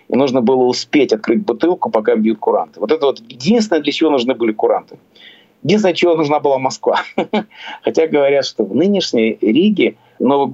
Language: Russian